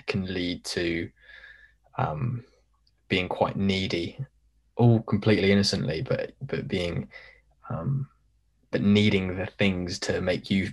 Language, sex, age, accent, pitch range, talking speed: English, male, 20-39, British, 95-110 Hz, 115 wpm